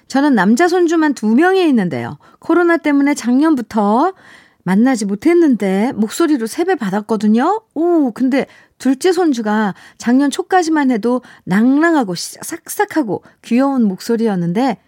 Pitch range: 185-260 Hz